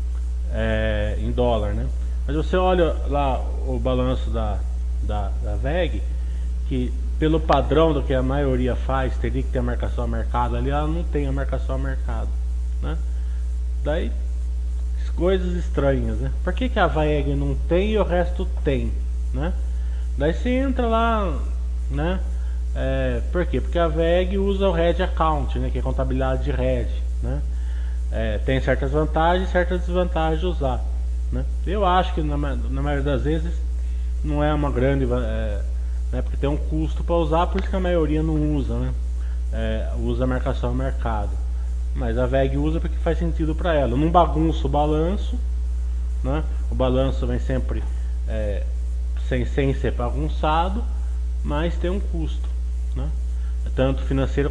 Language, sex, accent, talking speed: Portuguese, male, Brazilian, 160 wpm